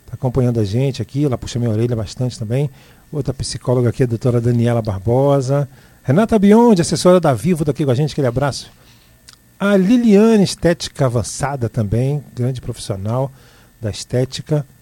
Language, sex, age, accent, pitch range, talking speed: Portuguese, male, 50-69, Brazilian, 120-165 Hz, 150 wpm